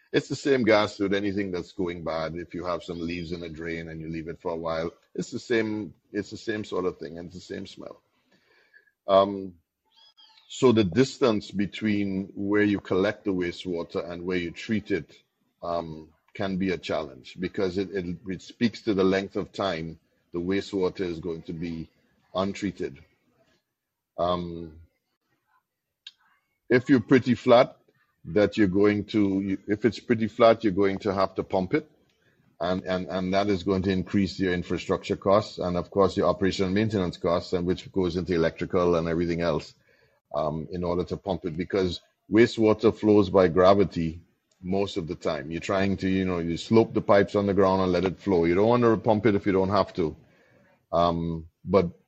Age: 50-69